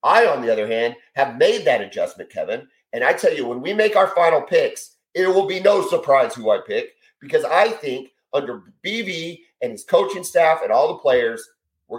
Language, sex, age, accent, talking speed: English, male, 40-59, American, 210 wpm